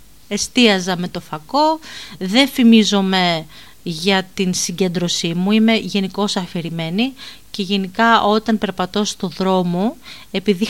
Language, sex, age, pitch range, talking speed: Greek, female, 30-49, 185-245 Hz, 110 wpm